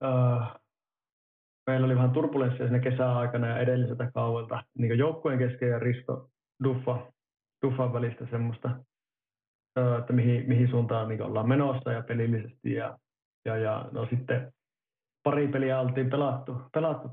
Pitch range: 115-130 Hz